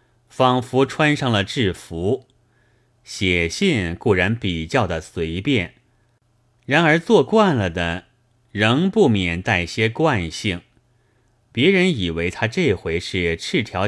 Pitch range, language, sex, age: 95-125 Hz, Chinese, male, 30-49